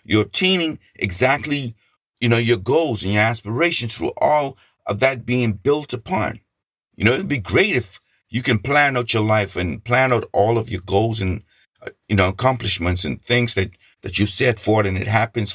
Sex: male